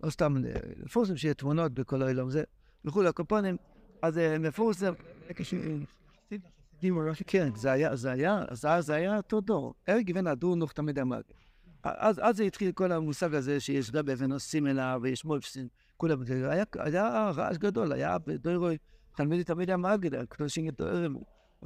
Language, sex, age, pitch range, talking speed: Hebrew, male, 60-79, 145-195 Hz, 140 wpm